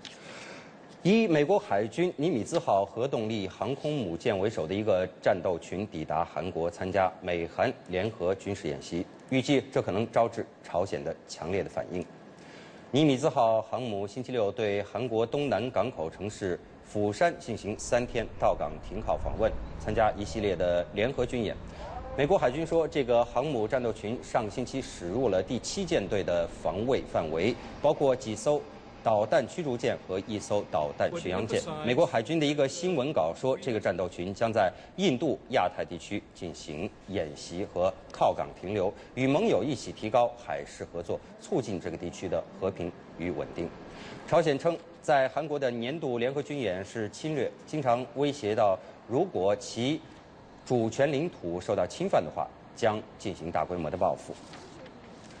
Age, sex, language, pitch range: 30-49, male, English, 100-140 Hz